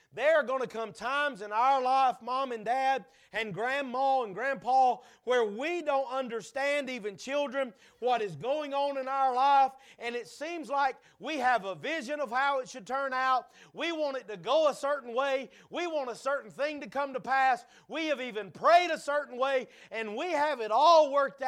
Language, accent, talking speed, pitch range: English, American, 205 wpm, 225-285 Hz